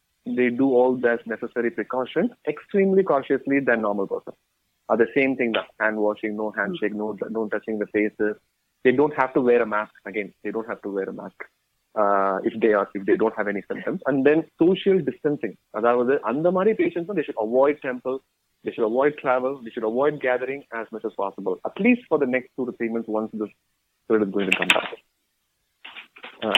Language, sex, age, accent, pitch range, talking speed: Tamil, male, 30-49, native, 110-135 Hz, 210 wpm